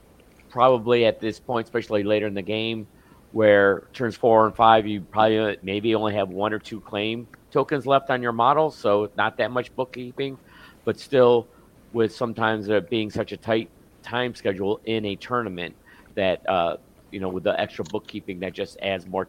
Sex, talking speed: male, 185 wpm